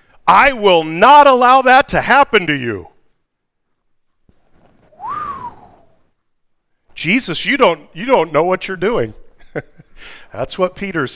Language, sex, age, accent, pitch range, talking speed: English, male, 40-59, American, 135-195 Hz, 115 wpm